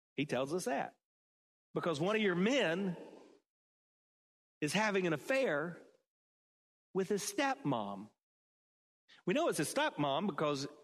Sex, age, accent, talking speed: male, 40-59, American, 120 wpm